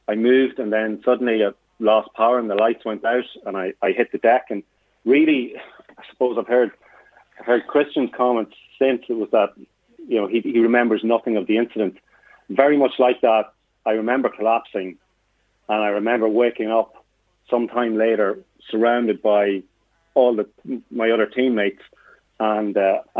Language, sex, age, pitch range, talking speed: English, male, 30-49, 110-125 Hz, 170 wpm